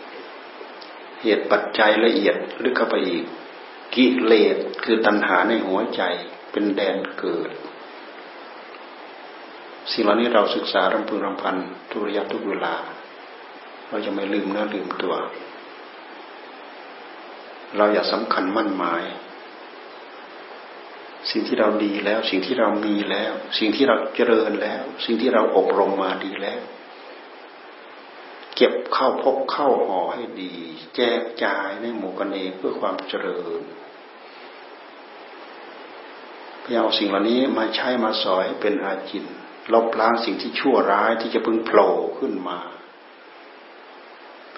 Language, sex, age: Thai, male, 60-79